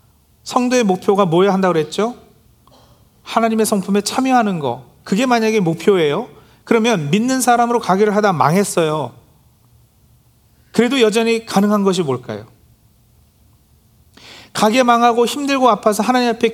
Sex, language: male, Korean